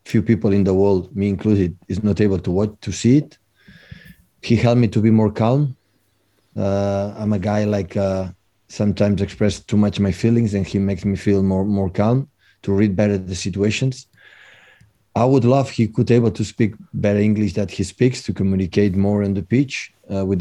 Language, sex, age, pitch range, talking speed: English, male, 30-49, 100-110 Hz, 200 wpm